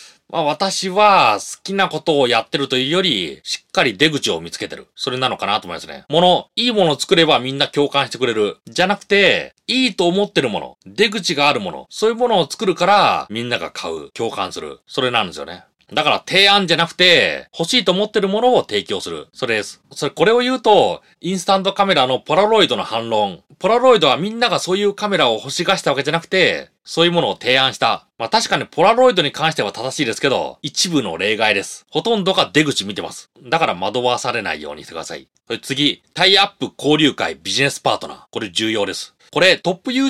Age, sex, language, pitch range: 30-49, male, Japanese, 145-210 Hz